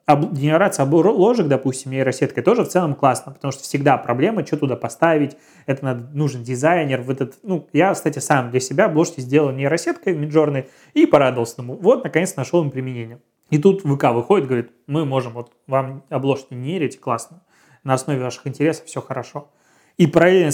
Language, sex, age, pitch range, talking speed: Russian, male, 20-39, 130-160 Hz, 170 wpm